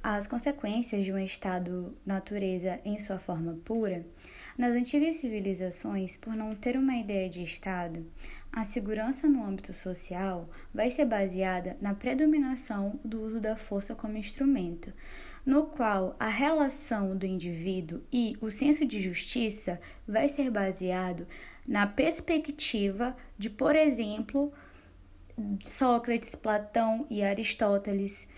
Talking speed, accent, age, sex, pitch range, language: 125 wpm, Brazilian, 10-29, female, 195-260 Hz, English